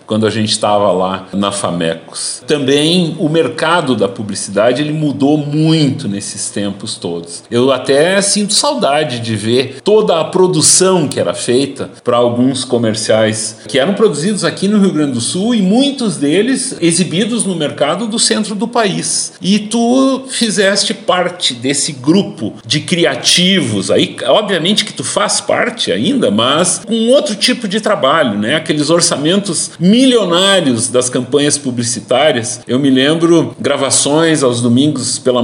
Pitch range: 120-200 Hz